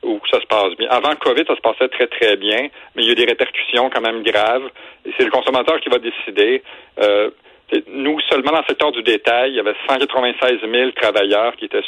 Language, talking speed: French, 235 wpm